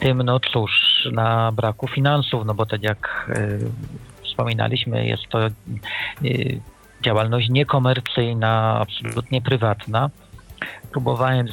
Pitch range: 110-130 Hz